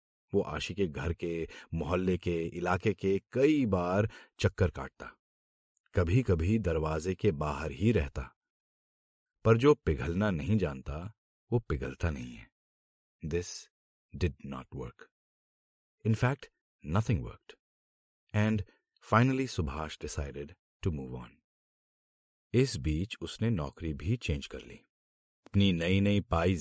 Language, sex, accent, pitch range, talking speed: Hindi, male, native, 75-110 Hz, 115 wpm